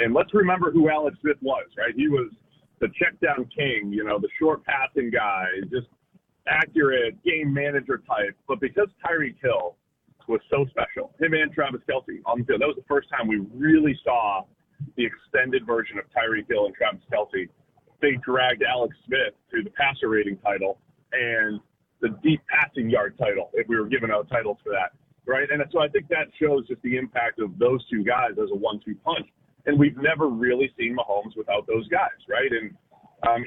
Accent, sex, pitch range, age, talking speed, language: American, male, 120-165 Hz, 30-49, 195 wpm, English